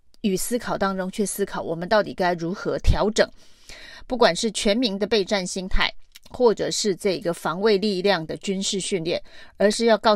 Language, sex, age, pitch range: Chinese, female, 30-49, 185-230 Hz